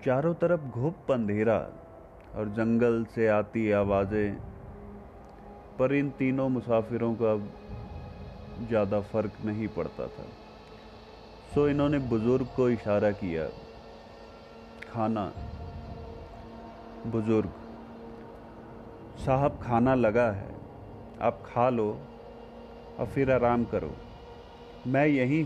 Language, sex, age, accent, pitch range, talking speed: Hindi, male, 30-49, native, 100-125 Hz, 95 wpm